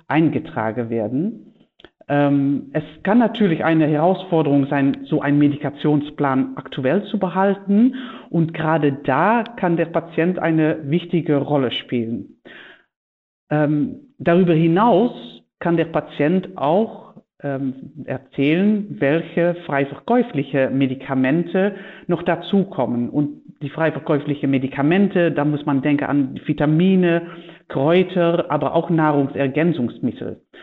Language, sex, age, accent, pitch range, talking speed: German, female, 50-69, German, 145-185 Hz, 100 wpm